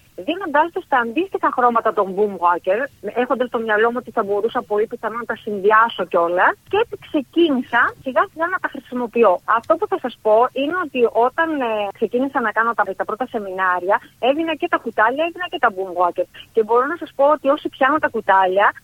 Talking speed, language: 200 wpm, Greek